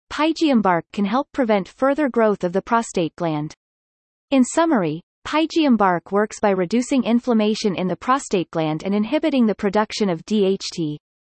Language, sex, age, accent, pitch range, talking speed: English, female, 30-49, American, 185-255 Hz, 155 wpm